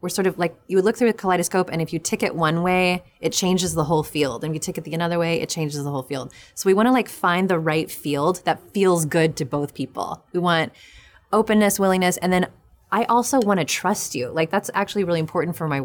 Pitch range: 150-190 Hz